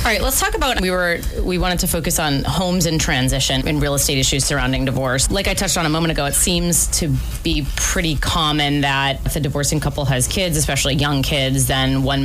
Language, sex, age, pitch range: English, female, 30-49, 135-155 Hz